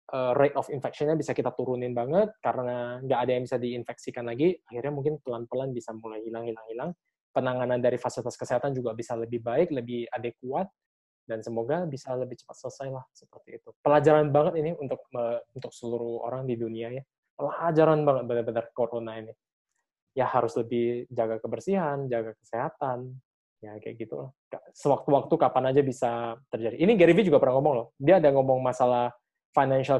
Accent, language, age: native, Indonesian, 20-39